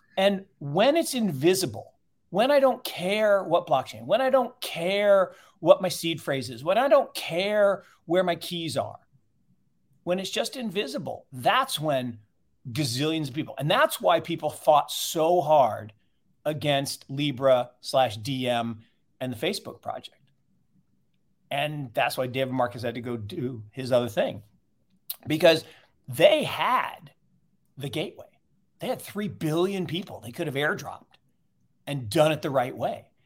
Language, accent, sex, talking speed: English, American, male, 150 wpm